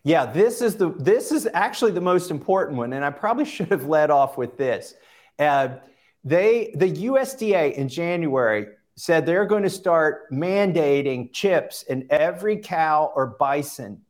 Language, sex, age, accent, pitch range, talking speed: English, male, 50-69, American, 140-180 Hz, 160 wpm